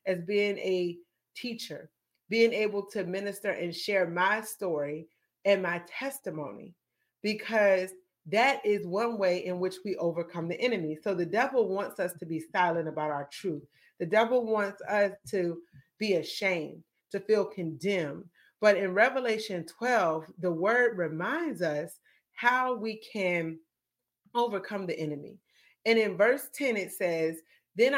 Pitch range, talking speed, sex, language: 170-220 Hz, 145 wpm, female, English